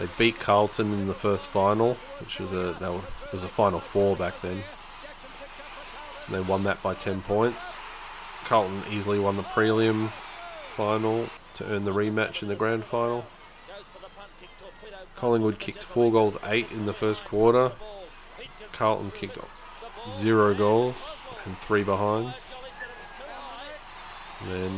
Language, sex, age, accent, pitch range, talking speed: English, male, 20-39, Australian, 100-115 Hz, 140 wpm